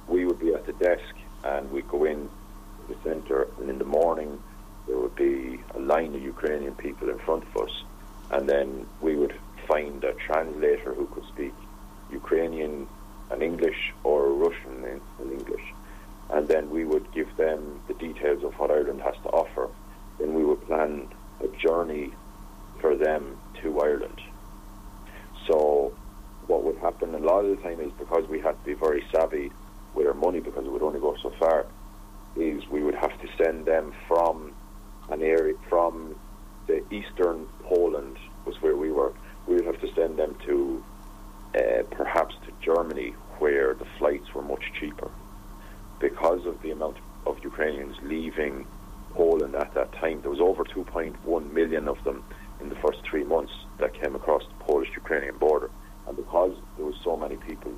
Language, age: English, 40-59